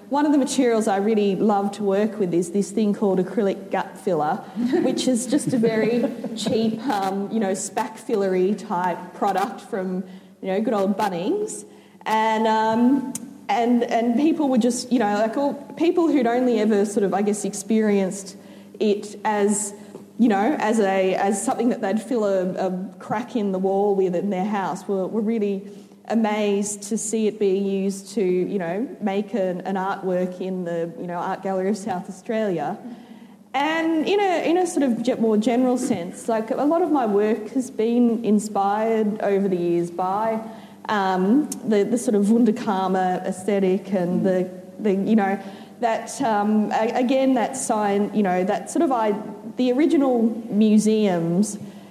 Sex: female